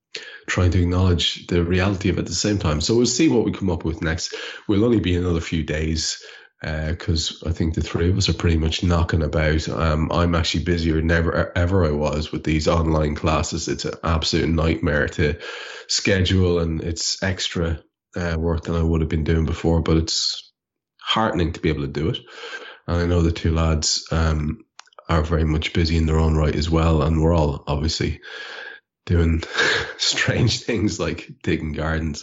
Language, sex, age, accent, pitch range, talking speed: English, male, 20-39, Irish, 80-85 Hz, 195 wpm